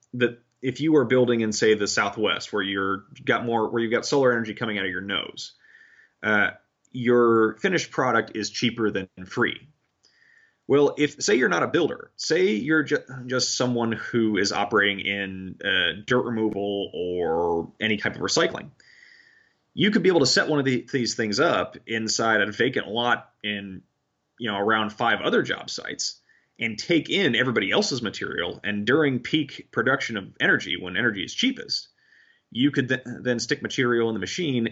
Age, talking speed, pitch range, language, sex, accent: 30-49, 180 wpm, 105-130 Hz, English, male, American